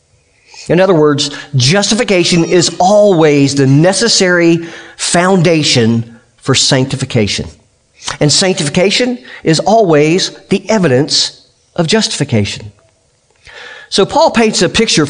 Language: English